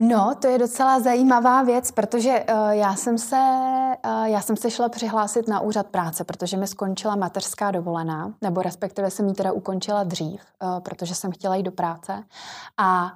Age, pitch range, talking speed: 20-39, 195-220 Hz, 180 wpm